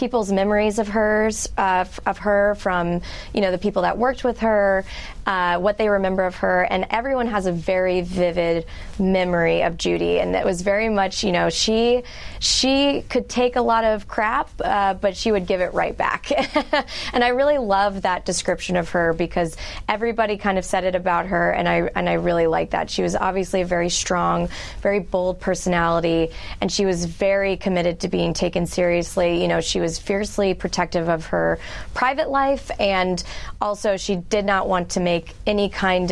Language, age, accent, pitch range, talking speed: English, 20-39, American, 175-210 Hz, 190 wpm